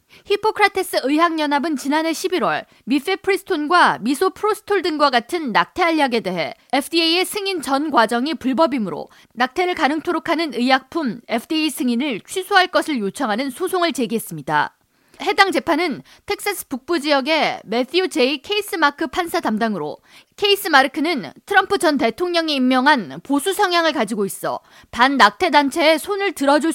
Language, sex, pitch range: Korean, female, 255-355 Hz